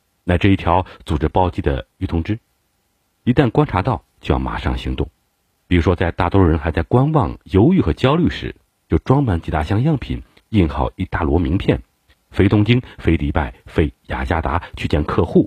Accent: native